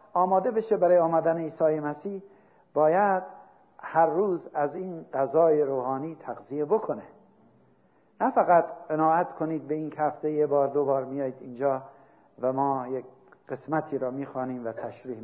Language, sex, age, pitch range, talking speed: Persian, male, 50-69, 140-180 Hz, 145 wpm